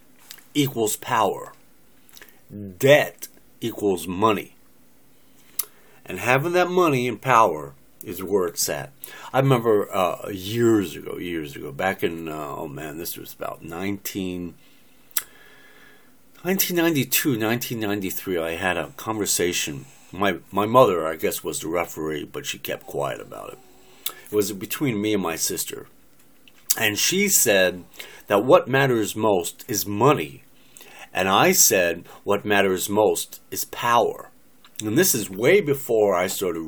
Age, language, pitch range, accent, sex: 50-69, Japanese, 90-125 Hz, American, male